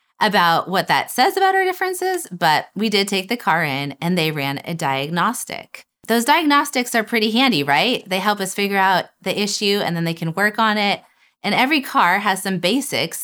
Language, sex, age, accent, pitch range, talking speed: English, female, 30-49, American, 160-210 Hz, 205 wpm